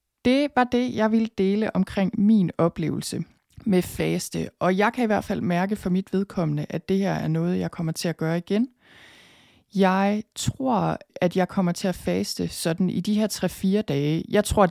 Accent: native